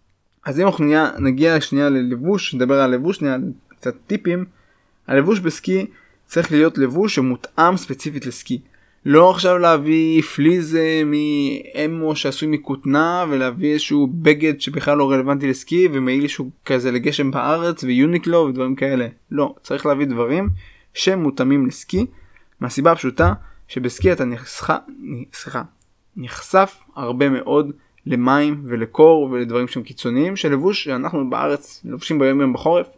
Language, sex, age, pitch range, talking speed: Hebrew, male, 20-39, 130-155 Hz, 120 wpm